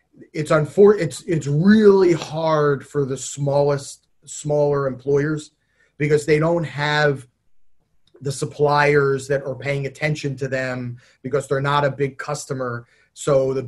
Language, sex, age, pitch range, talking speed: English, male, 30-49, 140-170 Hz, 135 wpm